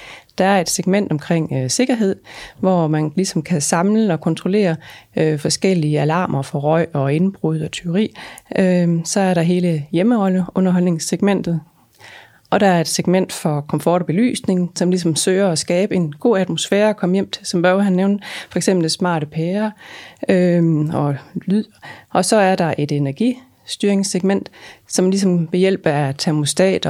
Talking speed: 165 wpm